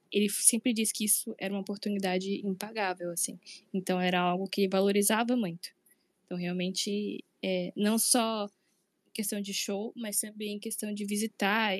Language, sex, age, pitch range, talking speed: Portuguese, female, 10-29, 190-215 Hz, 145 wpm